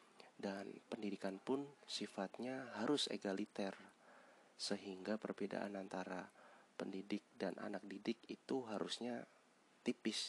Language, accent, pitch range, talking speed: Indonesian, native, 95-105 Hz, 95 wpm